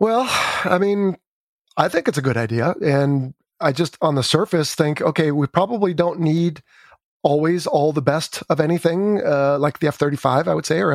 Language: English